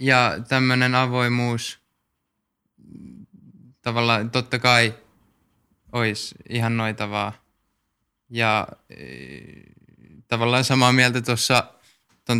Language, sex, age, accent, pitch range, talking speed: Finnish, male, 20-39, native, 110-125 Hz, 75 wpm